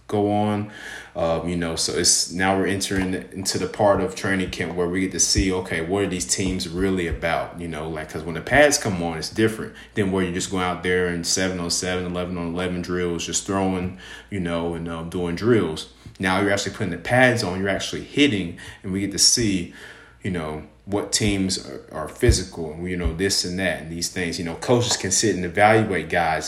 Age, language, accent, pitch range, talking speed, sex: 30-49, English, American, 90-105 Hz, 230 wpm, male